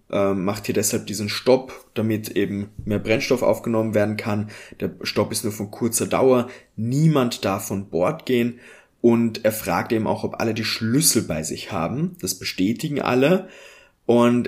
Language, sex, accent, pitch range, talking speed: German, male, German, 105-135 Hz, 165 wpm